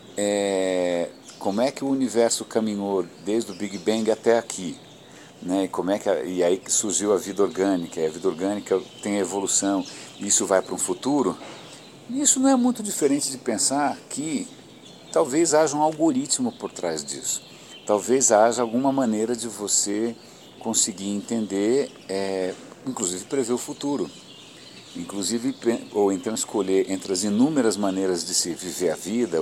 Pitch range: 100-140 Hz